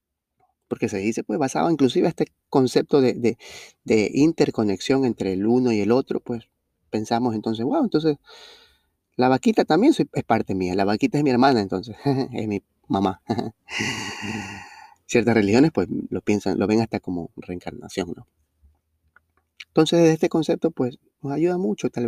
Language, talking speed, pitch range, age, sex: Spanish, 165 wpm, 100-150 Hz, 20-39, male